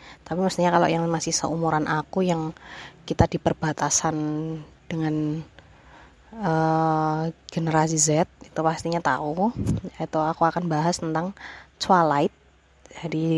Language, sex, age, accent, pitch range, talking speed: Indonesian, female, 20-39, native, 155-180 Hz, 110 wpm